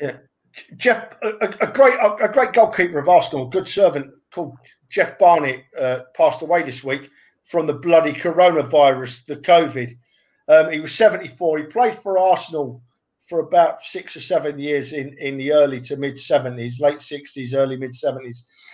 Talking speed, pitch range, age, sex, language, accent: 165 wpm, 145-210 Hz, 50-69, male, English, British